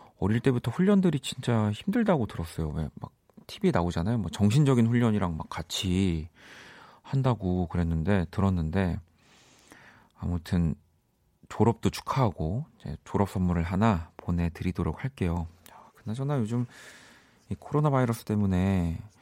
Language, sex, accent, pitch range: Korean, male, native, 85-125 Hz